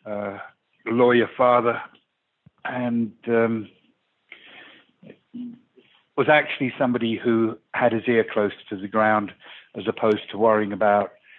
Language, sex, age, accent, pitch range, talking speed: English, male, 60-79, British, 105-125 Hz, 110 wpm